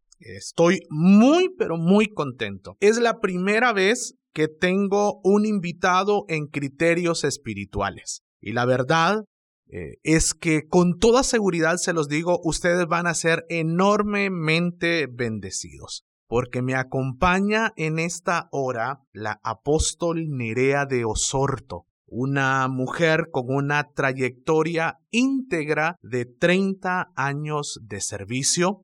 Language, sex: Spanish, male